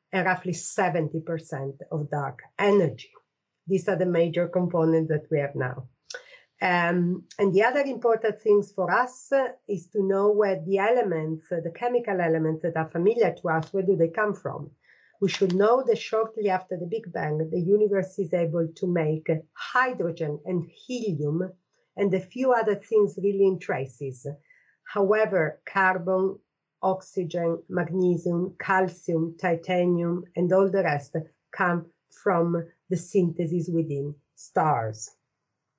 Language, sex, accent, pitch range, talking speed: English, female, Italian, 165-200 Hz, 140 wpm